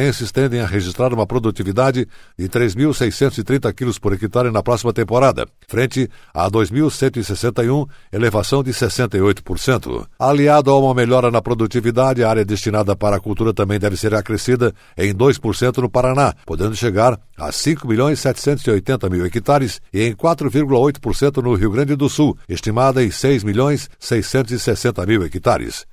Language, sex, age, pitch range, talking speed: Portuguese, male, 60-79, 110-135 Hz, 130 wpm